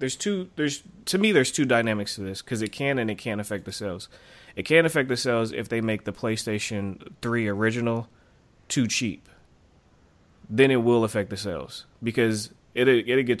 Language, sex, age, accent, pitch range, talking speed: English, male, 20-39, American, 100-120 Hz, 195 wpm